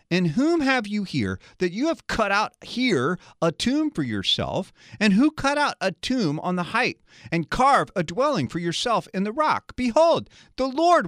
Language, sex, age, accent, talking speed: English, male, 40-59, American, 195 wpm